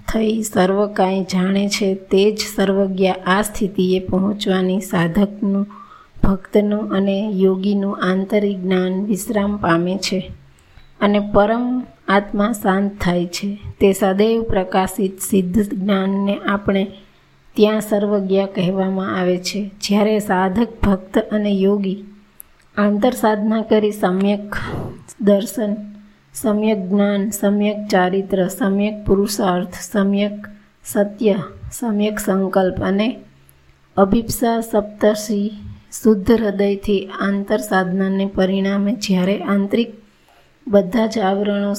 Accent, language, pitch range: native, Gujarati, 190-210 Hz